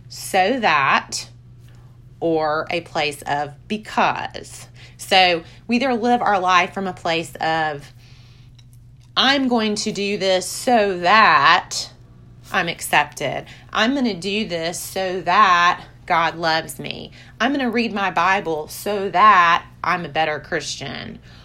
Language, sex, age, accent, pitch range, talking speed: English, female, 30-49, American, 125-205 Hz, 135 wpm